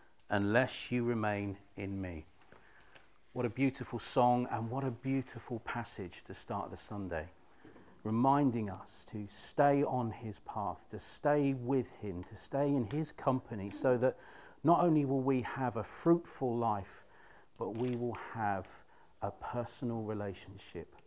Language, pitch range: English, 115-140 Hz